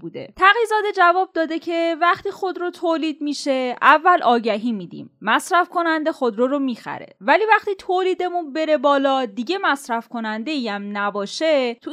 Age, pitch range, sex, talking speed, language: 10-29, 215-325 Hz, female, 135 wpm, Persian